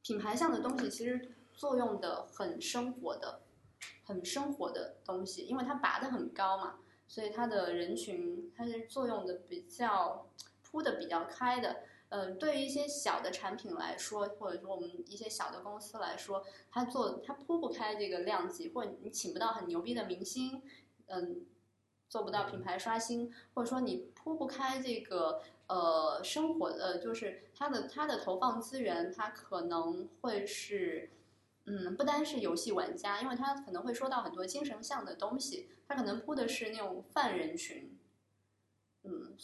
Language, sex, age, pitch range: Chinese, female, 20-39, 200-290 Hz